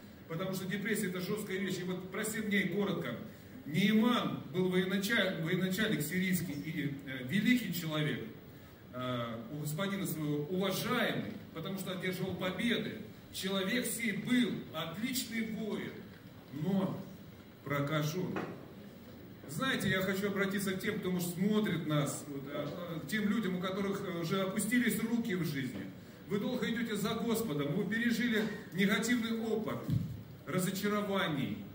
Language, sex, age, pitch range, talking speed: Russian, male, 40-59, 175-220 Hz, 130 wpm